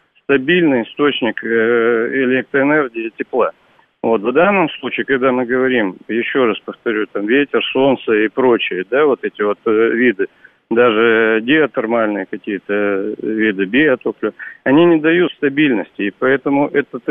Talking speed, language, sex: 130 wpm, Russian, male